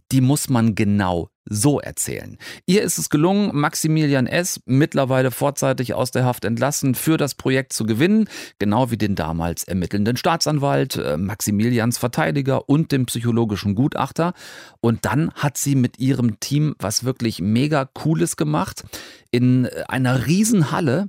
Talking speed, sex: 140 wpm, male